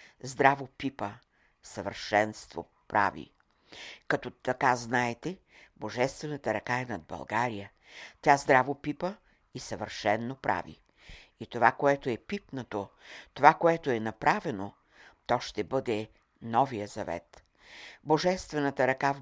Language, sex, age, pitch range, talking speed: Bulgarian, female, 60-79, 110-150 Hz, 110 wpm